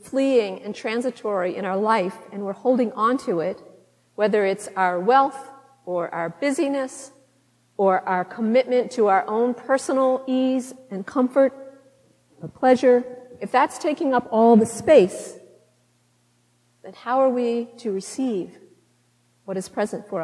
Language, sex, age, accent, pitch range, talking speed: English, female, 50-69, American, 200-260 Hz, 140 wpm